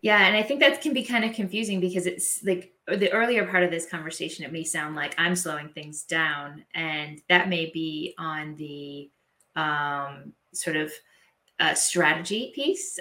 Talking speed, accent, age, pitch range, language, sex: 180 wpm, American, 20-39, 160-185 Hz, English, female